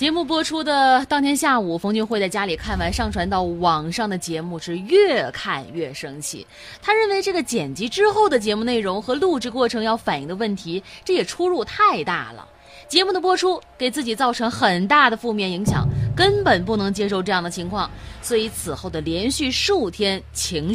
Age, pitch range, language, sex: 20-39, 185-310 Hz, Chinese, female